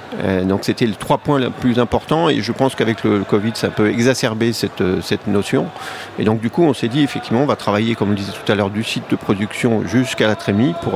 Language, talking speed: French, 250 wpm